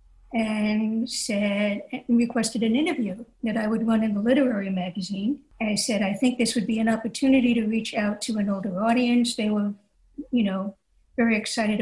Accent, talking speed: American, 190 wpm